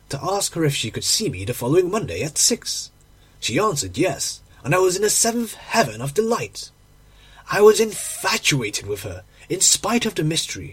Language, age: Korean, 30-49